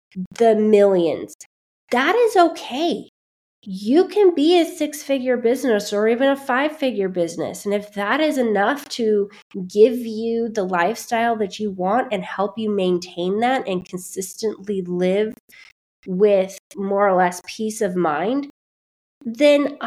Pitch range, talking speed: 195-265 Hz, 140 wpm